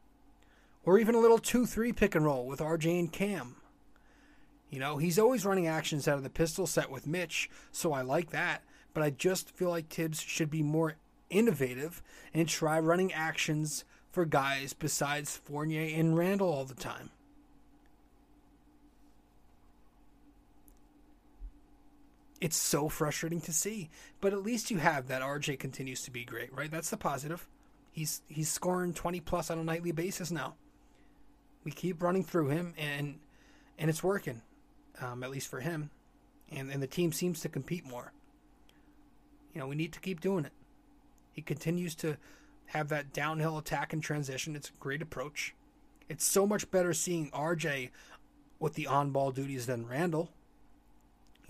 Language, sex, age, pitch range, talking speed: English, male, 30-49, 145-175 Hz, 160 wpm